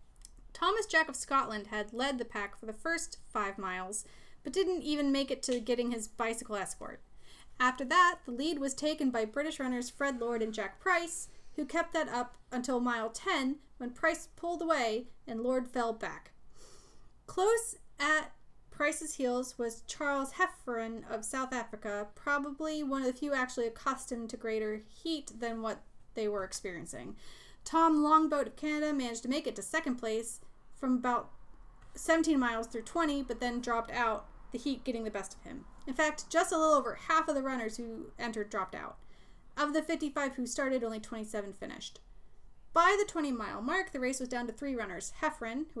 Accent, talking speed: American, 185 wpm